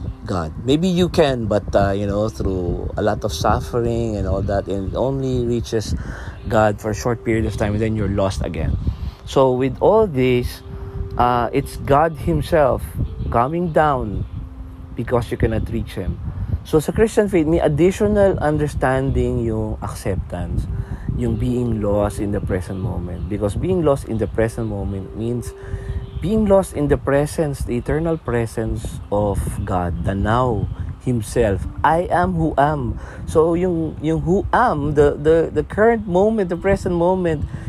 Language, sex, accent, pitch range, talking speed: Filipino, male, native, 100-160 Hz, 160 wpm